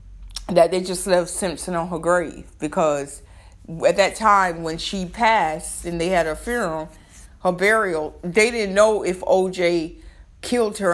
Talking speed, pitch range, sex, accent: 160 wpm, 155-200 Hz, female, American